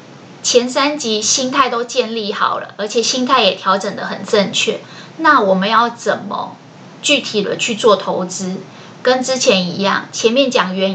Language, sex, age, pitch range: Chinese, female, 20-39, 195-245 Hz